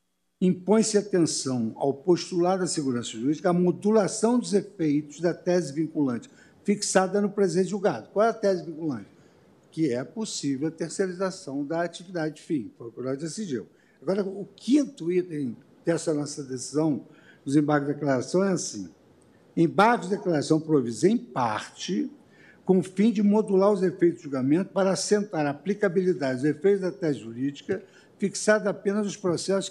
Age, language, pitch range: 60-79, Portuguese, 155-200 Hz